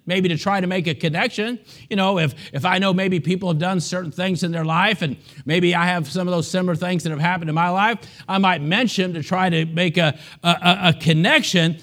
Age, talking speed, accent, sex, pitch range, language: 50-69, 245 wpm, American, male, 155-185 Hz, English